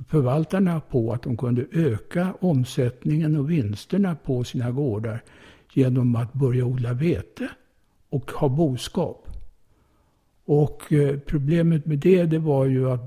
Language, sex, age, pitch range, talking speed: English, male, 60-79, 125-155 Hz, 130 wpm